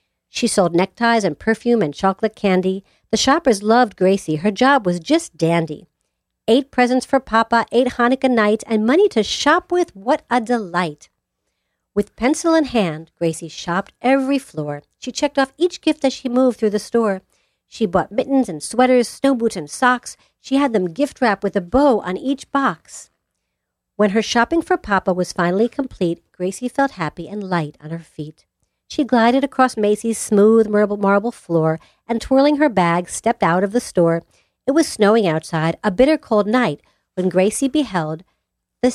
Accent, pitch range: American, 185-255 Hz